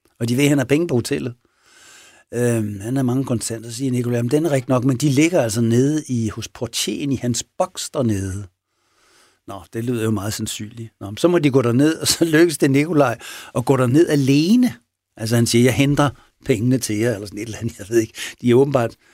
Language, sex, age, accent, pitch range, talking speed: Danish, male, 60-79, native, 110-135 Hz, 230 wpm